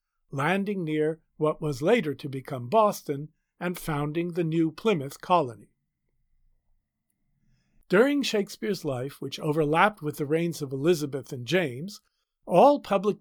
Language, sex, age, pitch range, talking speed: English, male, 50-69, 150-200 Hz, 125 wpm